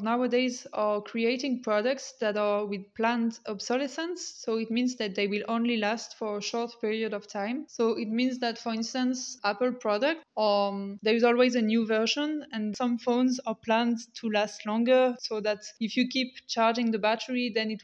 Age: 20-39